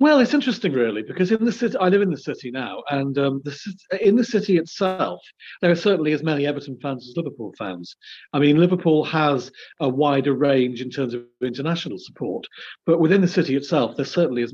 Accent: British